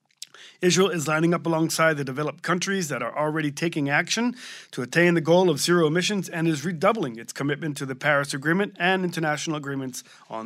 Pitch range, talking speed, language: 145-175 Hz, 190 wpm, English